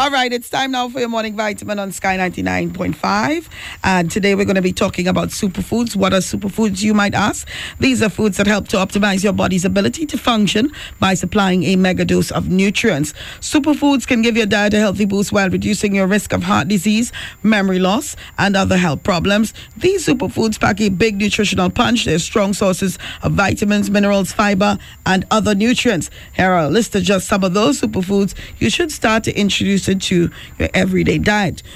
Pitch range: 190-225 Hz